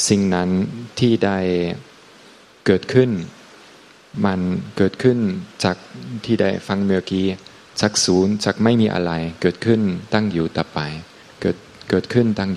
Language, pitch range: Thai, 95-110 Hz